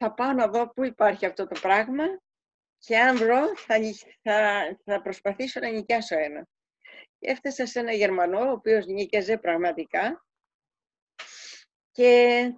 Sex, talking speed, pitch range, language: female, 135 wpm, 220-310 Hz, Greek